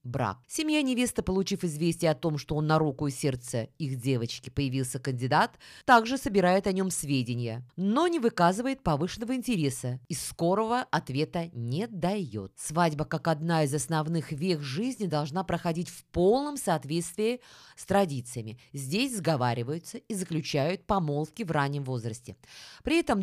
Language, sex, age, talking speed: Russian, female, 20-39, 145 wpm